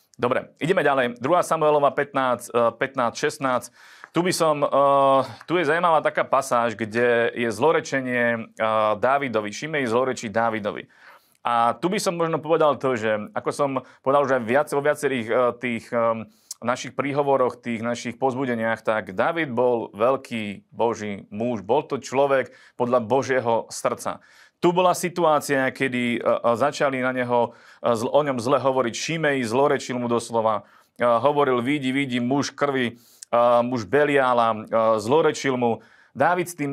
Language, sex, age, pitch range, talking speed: Slovak, male, 30-49, 115-140 Hz, 135 wpm